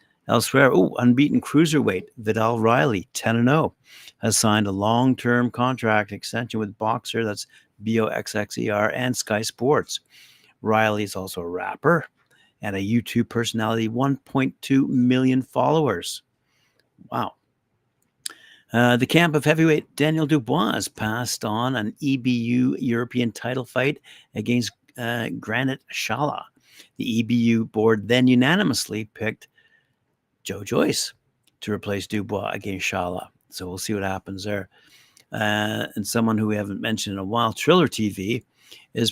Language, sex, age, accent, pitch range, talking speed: English, male, 50-69, American, 105-125 Hz, 140 wpm